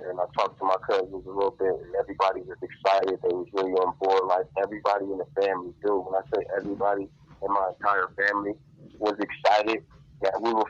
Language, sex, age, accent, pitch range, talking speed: English, male, 30-49, American, 95-120 Hz, 210 wpm